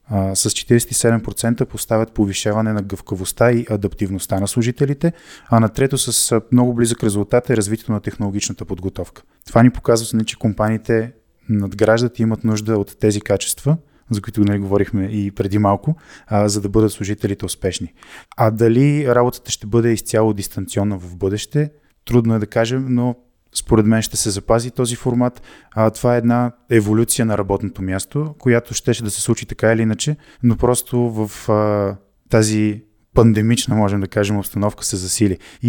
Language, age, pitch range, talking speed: Bulgarian, 20-39, 105-120 Hz, 165 wpm